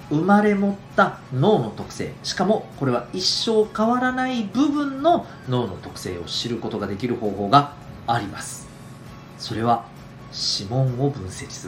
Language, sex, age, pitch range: Japanese, male, 40-59, 110-160 Hz